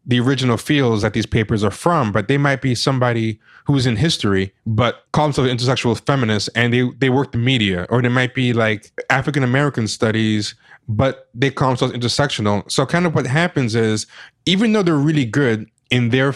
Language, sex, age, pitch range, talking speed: English, male, 20-39, 110-140 Hz, 200 wpm